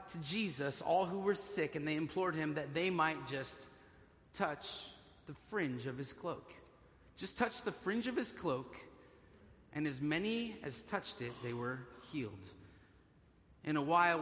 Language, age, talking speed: English, 30-49, 165 wpm